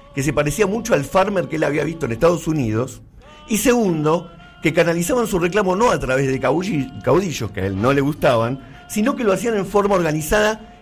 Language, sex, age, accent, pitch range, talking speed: Spanish, male, 50-69, Argentinian, 120-180 Hz, 205 wpm